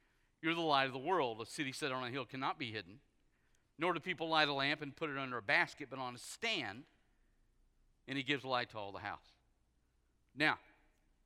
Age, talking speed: 50-69, 215 wpm